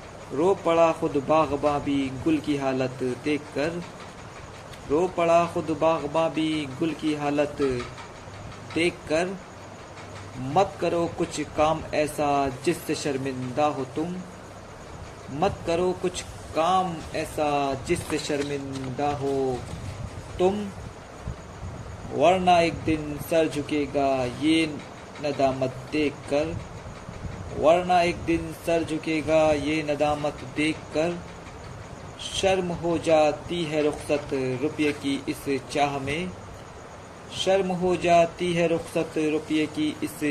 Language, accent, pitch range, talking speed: Hindi, native, 140-165 Hz, 105 wpm